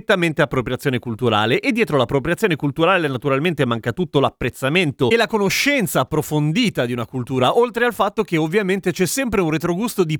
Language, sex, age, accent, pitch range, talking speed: Italian, male, 30-49, native, 130-185 Hz, 165 wpm